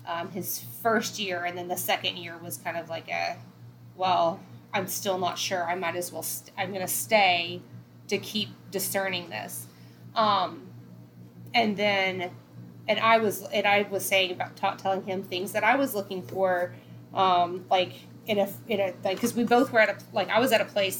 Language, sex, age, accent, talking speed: English, female, 20-39, American, 195 wpm